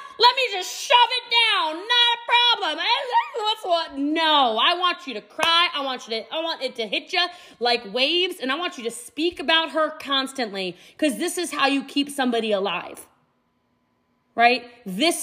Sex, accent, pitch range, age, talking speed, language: female, American, 230-325 Hz, 30-49, 170 wpm, English